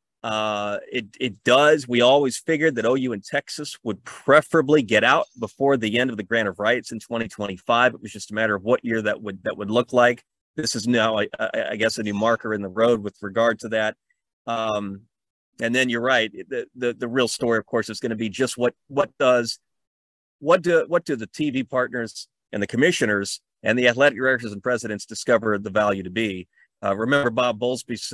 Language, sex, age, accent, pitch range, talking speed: English, male, 30-49, American, 105-125 Hz, 215 wpm